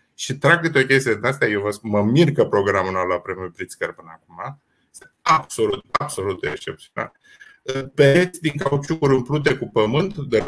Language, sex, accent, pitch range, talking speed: Romanian, male, native, 135-205 Hz, 180 wpm